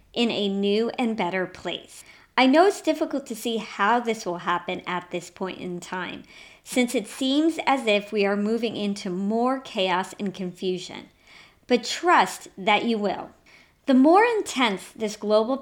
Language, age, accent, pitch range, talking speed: English, 40-59, American, 190-260 Hz, 170 wpm